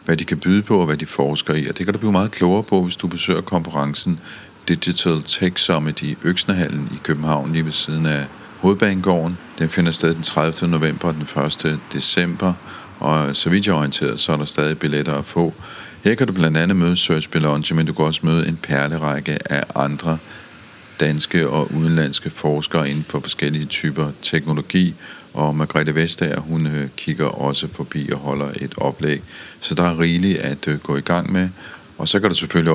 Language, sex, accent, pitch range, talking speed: Danish, male, native, 75-85 Hz, 195 wpm